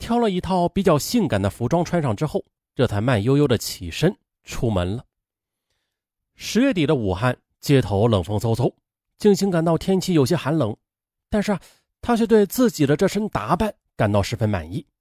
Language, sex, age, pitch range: Chinese, male, 30-49, 110-180 Hz